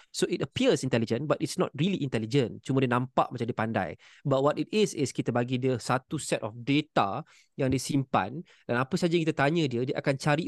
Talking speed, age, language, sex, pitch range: 230 wpm, 20-39, Malay, male, 125-150 Hz